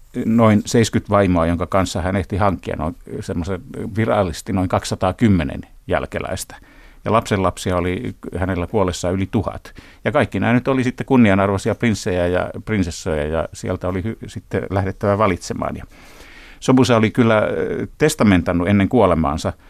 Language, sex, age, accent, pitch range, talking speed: Finnish, male, 50-69, native, 90-115 Hz, 135 wpm